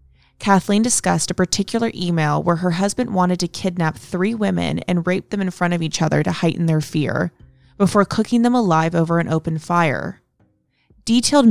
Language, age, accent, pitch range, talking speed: English, 20-39, American, 165-205 Hz, 175 wpm